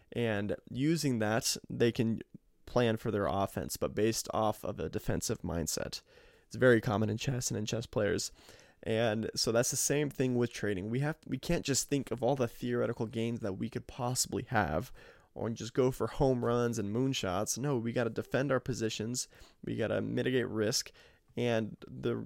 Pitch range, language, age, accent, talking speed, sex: 110-125 Hz, English, 20-39, American, 190 wpm, male